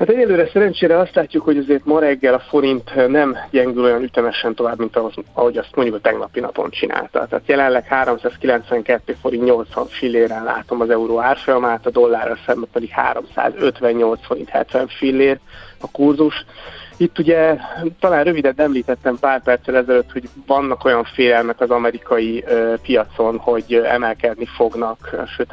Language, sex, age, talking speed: Hungarian, male, 30-49, 150 wpm